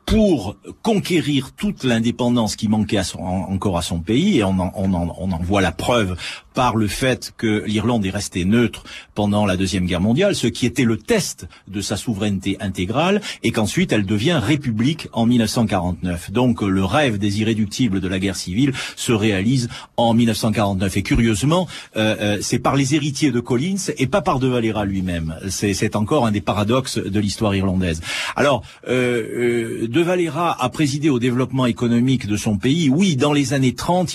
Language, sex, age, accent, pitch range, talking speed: French, male, 50-69, French, 100-130 Hz, 175 wpm